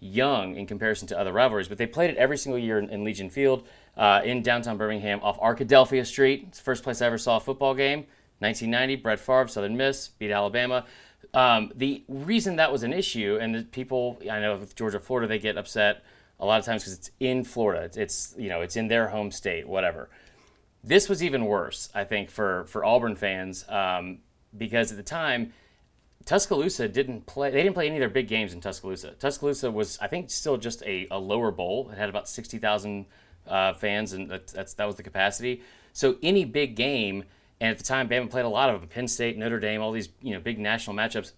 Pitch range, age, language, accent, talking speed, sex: 105-130 Hz, 30-49, English, American, 220 wpm, male